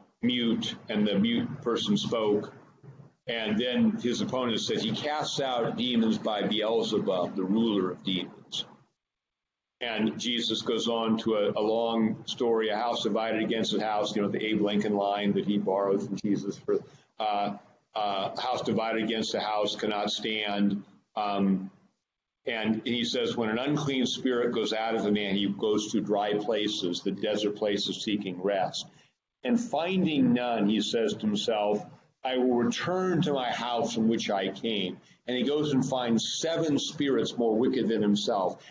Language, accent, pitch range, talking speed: English, American, 105-125 Hz, 165 wpm